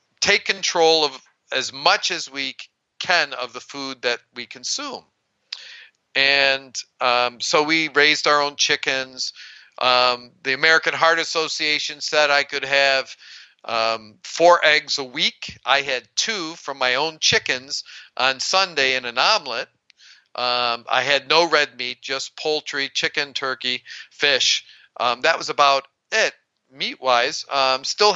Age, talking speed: 50-69, 140 wpm